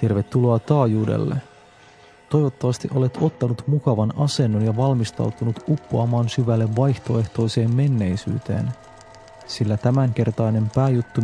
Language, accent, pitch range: Finnish, native, 110-130 Hz